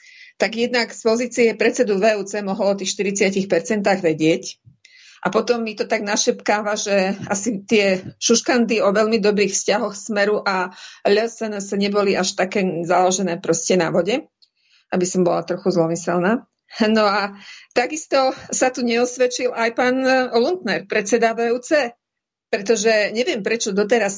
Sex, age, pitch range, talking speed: female, 50-69, 200-245 Hz, 140 wpm